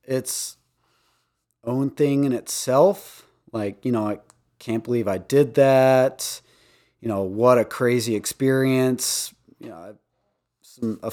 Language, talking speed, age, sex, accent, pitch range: English, 125 wpm, 30-49, male, American, 110-135 Hz